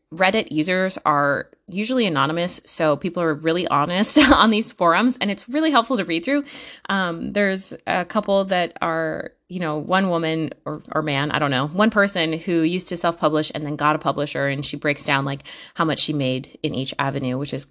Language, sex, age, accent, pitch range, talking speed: English, female, 20-39, American, 150-200 Hz, 205 wpm